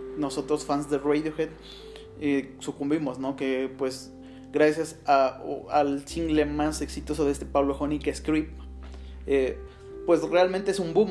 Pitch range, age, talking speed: 140-155 Hz, 20-39, 140 wpm